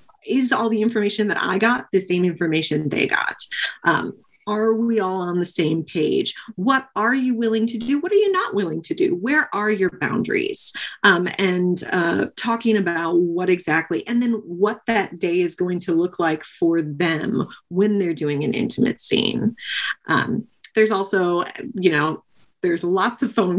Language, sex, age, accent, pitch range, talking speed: English, female, 30-49, American, 175-225 Hz, 180 wpm